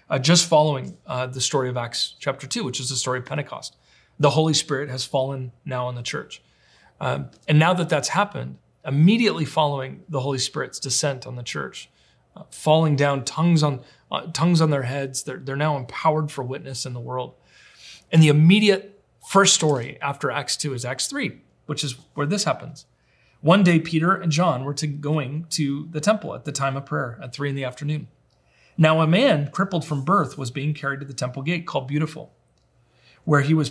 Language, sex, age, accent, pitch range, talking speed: English, male, 30-49, American, 130-160 Hz, 205 wpm